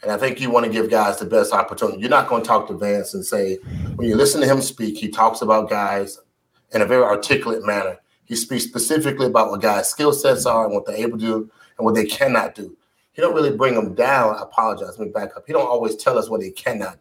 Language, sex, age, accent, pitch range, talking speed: English, male, 30-49, American, 105-125 Hz, 265 wpm